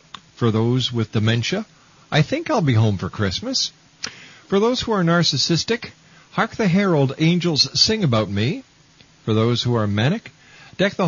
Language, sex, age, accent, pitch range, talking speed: English, male, 50-69, American, 130-175 Hz, 160 wpm